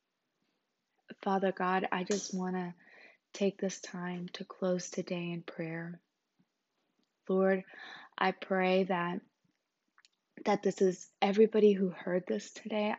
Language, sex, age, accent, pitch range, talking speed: English, female, 20-39, American, 180-200 Hz, 120 wpm